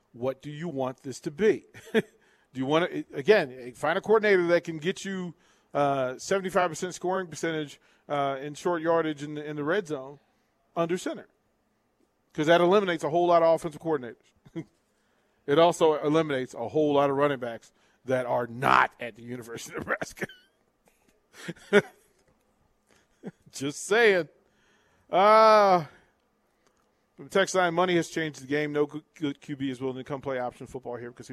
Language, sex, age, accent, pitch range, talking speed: English, male, 40-59, American, 130-170 Hz, 160 wpm